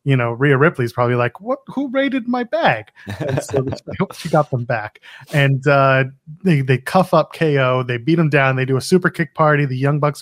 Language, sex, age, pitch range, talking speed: English, male, 30-49, 125-165 Hz, 235 wpm